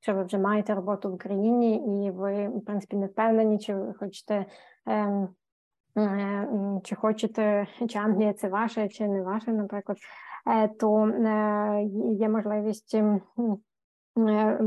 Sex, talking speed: female, 115 wpm